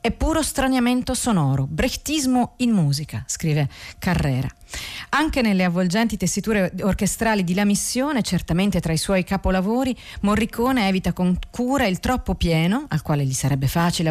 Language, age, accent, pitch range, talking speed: Italian, 40-59, native, 160-210 Hz, 145 wpm